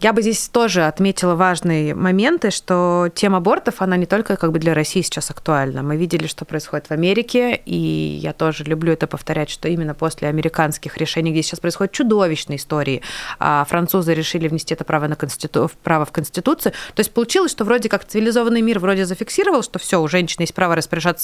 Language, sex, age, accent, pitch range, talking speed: Russian, female, 30-49, native, 160-195 Hz, 190 wpm